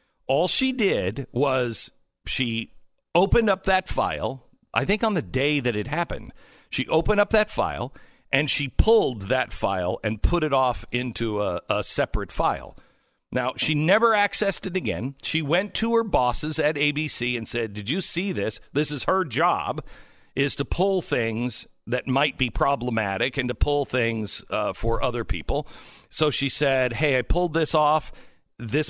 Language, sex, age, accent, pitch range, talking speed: English, male, 50-69, American, 125-175 Hz, 175 wpm